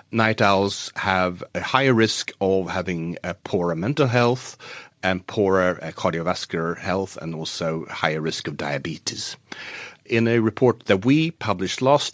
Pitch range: 90-115 Hz